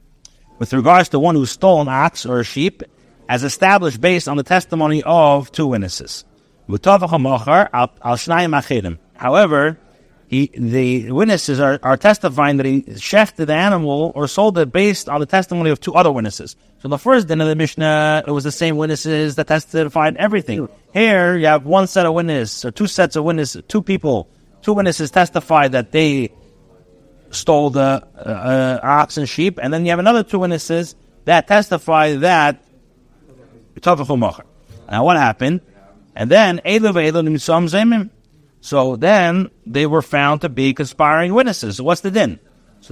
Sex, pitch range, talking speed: male, 130-175 Hz, 160 wpm